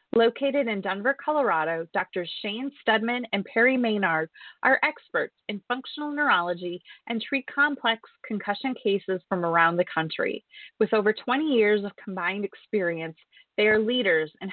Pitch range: 185-245 Hz